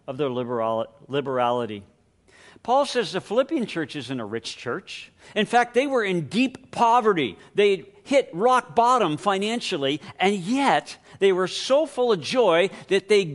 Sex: male